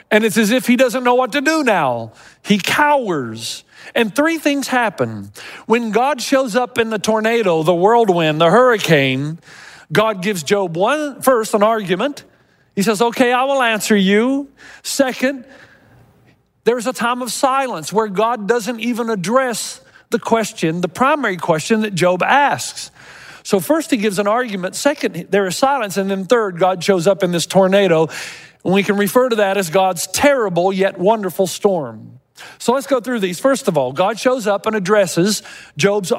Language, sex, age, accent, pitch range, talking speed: English, male, 40-59, American, 185-250 Hz, 175 wpm